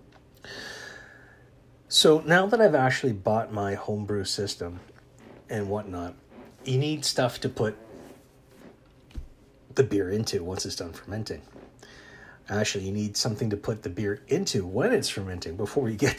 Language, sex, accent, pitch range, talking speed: English, male, American, 100-135 Hz, 140 wpm